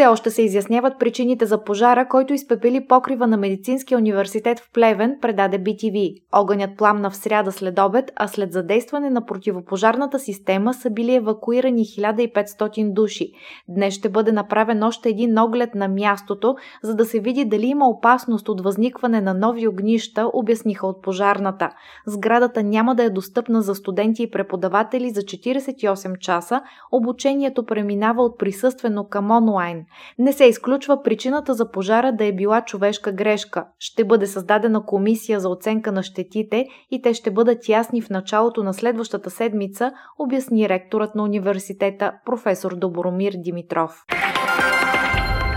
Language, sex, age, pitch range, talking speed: Bulgarian, female, 20-39, 200-240 Hz, 145 wpm